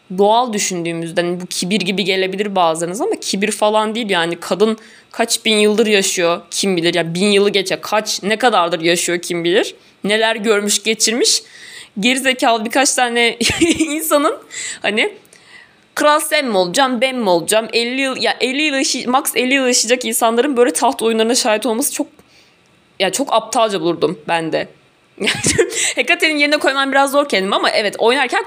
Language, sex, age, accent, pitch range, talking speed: Turkish, female, 20-39, native, 175-245 Hz, 165 wpm